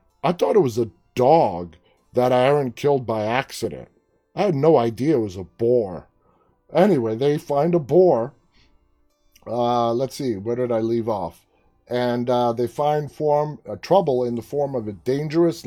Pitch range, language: 110-140 Hz, English